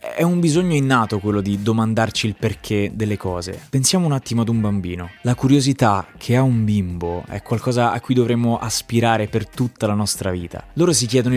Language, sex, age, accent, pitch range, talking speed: Italian, male, 20-39, native, 105-135 Hz, 195 wpm